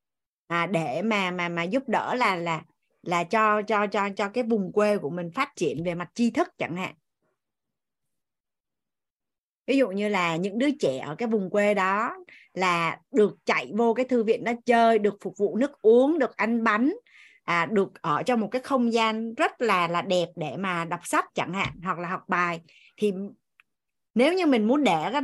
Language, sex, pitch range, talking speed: Vietnamese, female, 190-255 Hz, 200 wpm